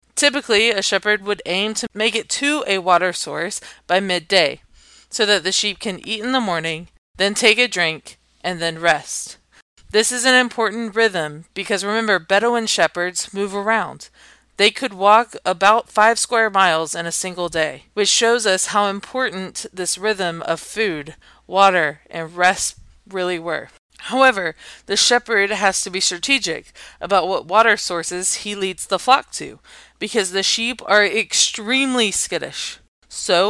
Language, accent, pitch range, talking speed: English, American, 180-225 Hz, 160 wpm